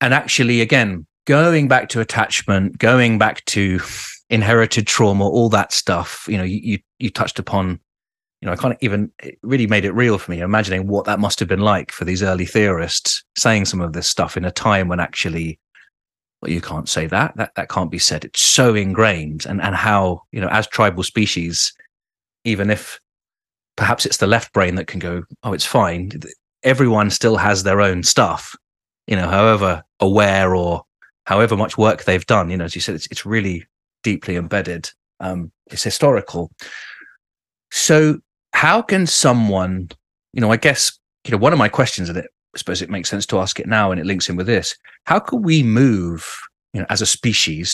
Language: English